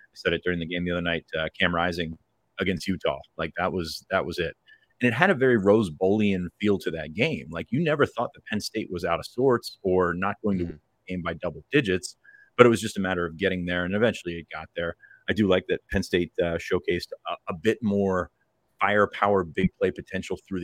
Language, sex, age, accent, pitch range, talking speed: English, male, 30-49, American, 90-100 Hz, 240 wpm